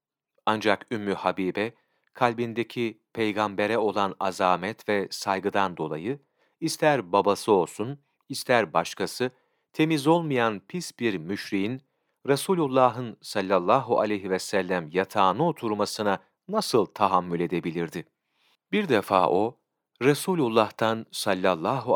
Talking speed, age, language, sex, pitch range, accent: 95 wpm, 40-59, Turkish, male, 95-135 Hz, native